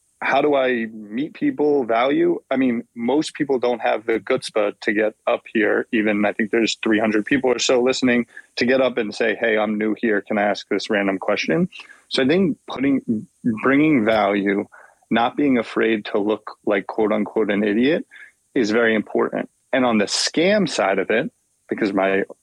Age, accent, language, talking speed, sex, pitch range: 30-49, American, English, 190 wpm, male, 105-135 Hz